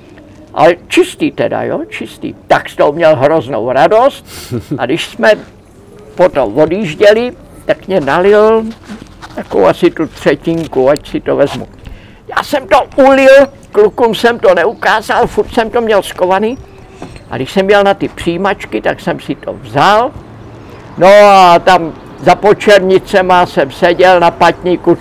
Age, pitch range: 60-79, 145-195 Hz